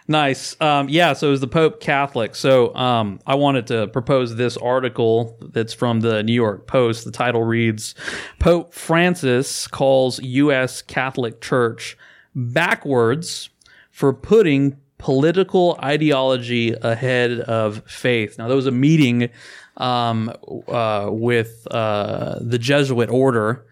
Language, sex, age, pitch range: English, male, 30-49, 110-135 Hz